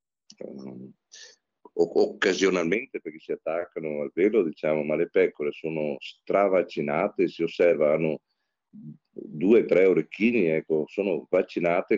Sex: male